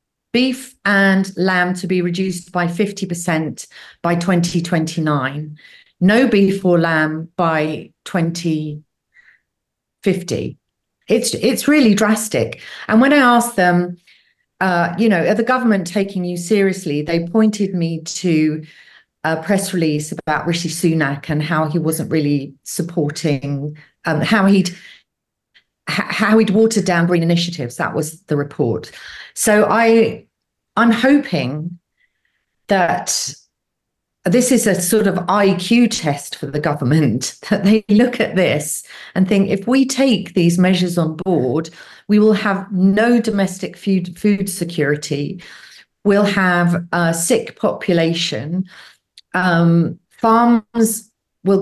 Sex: female